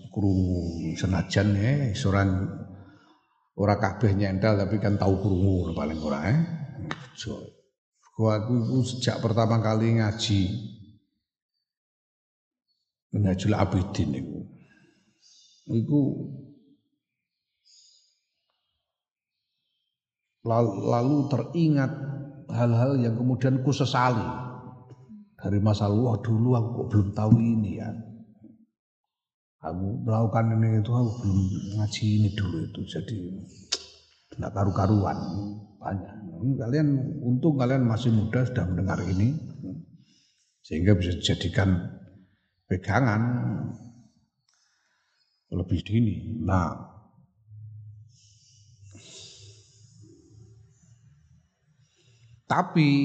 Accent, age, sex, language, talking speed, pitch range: native, 50-69, male, Indonesian, 80 wpm, 100-125 Hz